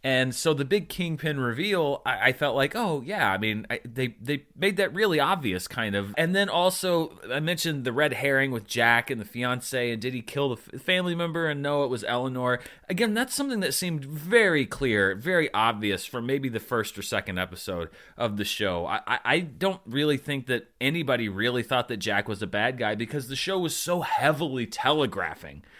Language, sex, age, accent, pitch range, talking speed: English, male, 30-49, American, 115-165 Hz, 205 wpm